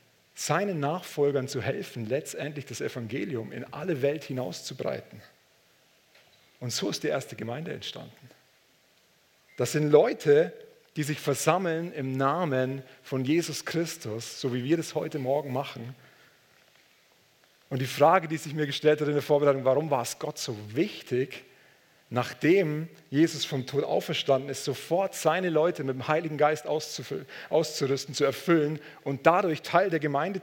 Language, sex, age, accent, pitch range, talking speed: German, male, 40-59, German, 130-155 Hz, 145 wpm